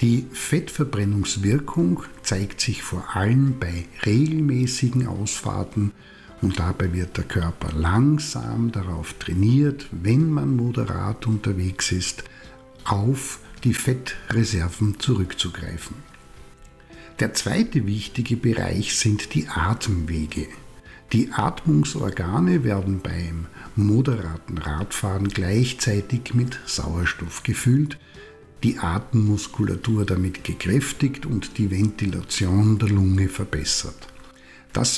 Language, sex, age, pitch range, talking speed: German, male, 60-79, 95-125 Hz, 95 wpm